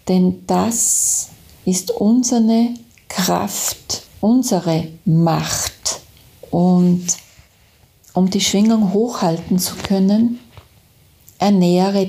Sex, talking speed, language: female, 75 wpm, German